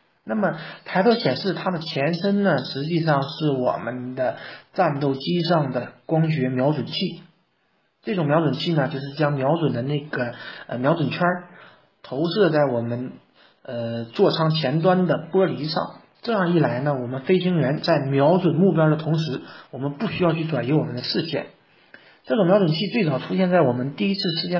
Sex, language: male, Chinese